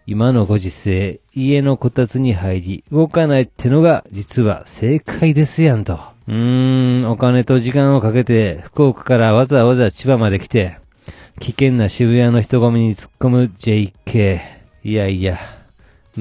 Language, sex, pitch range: Japanese, male, 105-135 Hz